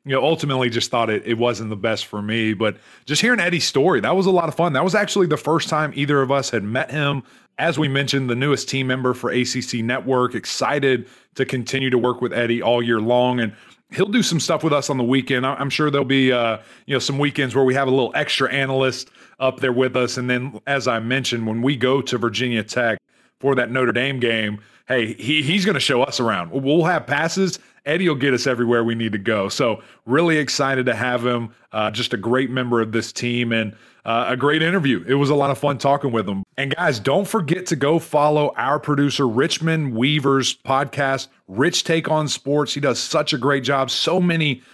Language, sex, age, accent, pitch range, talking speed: English, male, 30-49, American, 120-145 Hz, 230 wpm